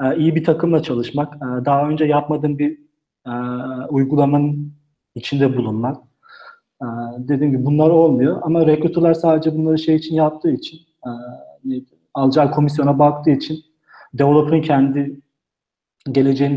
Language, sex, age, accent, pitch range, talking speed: Turkish, male, 40-59, native, 130-155 Hz, 110 wpm